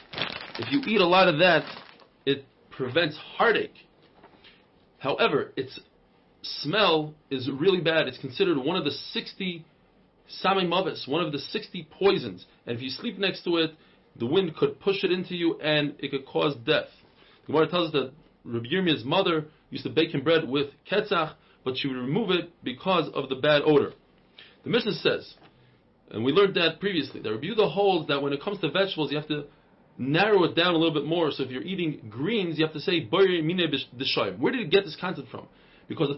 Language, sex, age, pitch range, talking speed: English, male, 30-49, 145-190 Hz, 200 wpm